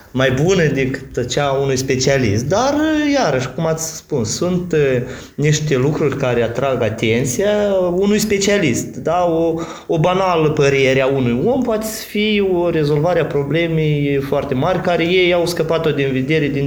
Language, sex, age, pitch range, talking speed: Romanian, male, 20-39, 120-165 Hz, 150 wpm